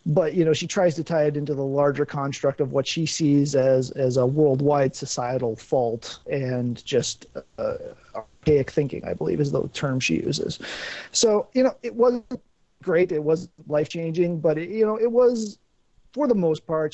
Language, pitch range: English, 130-165 Hz